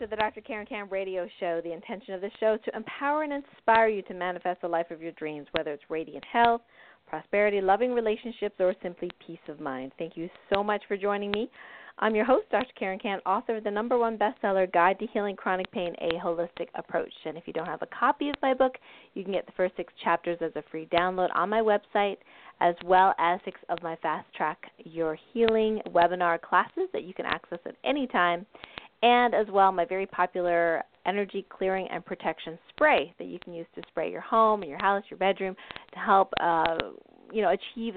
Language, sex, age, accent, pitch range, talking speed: English, female, 40-59, American, 175-220 Hz, 215 wpm